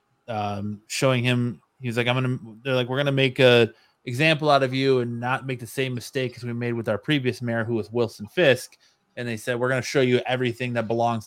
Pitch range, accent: 110-125 Hz, American